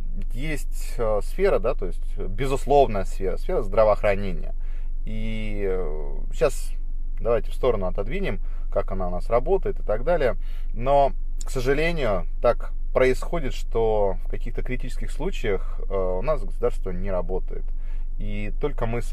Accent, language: native, Russian